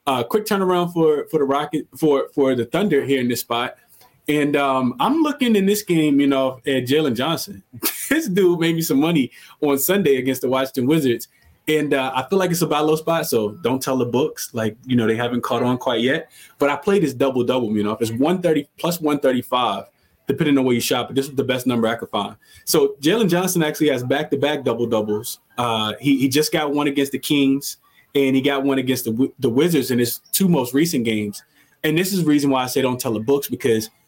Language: English